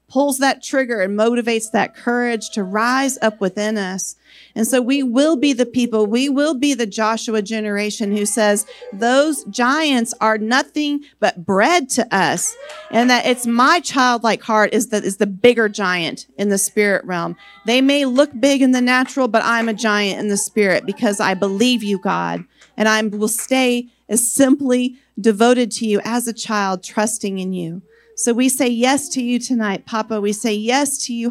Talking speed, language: 190 wpm, English